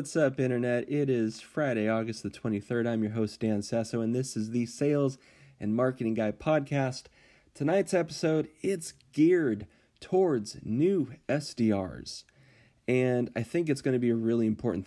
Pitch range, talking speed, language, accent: 105-130 Hz, 160 wpm, English, American